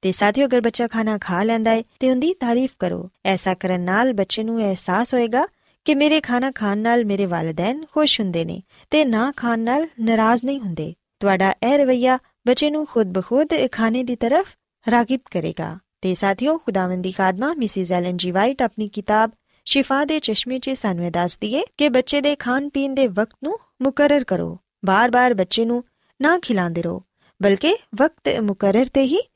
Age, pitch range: 20-39, 195-275 Hz